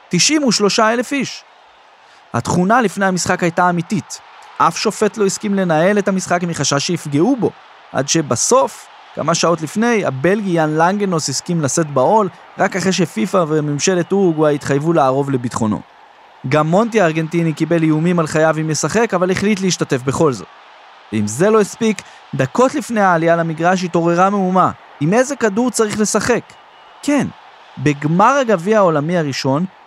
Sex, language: male, Hebrew